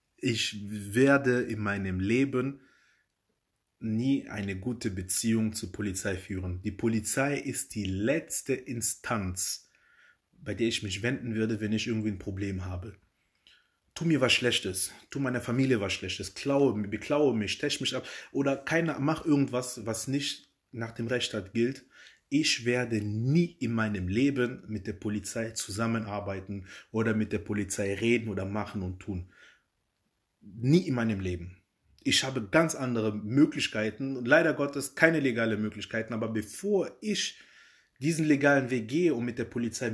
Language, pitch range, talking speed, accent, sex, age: German, 105-135 Hz, 150 wpm, German, male, 30-49